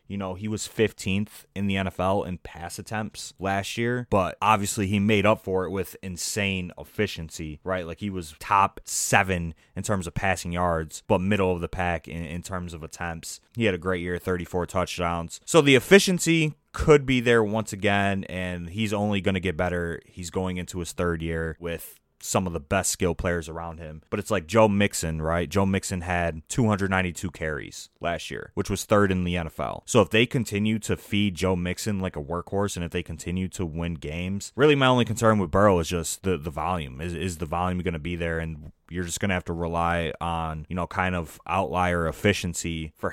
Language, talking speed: English, 215 wpm